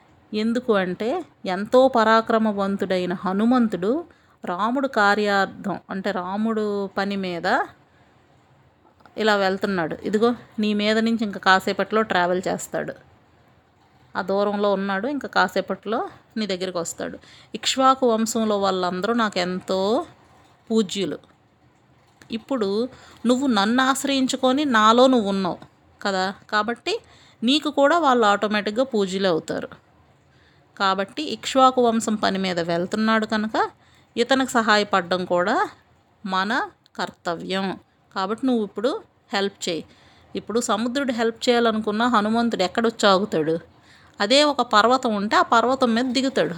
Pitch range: 195-245 Hz